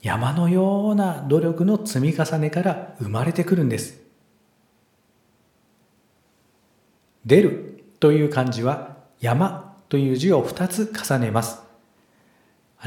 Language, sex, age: Japanese, male, 50-69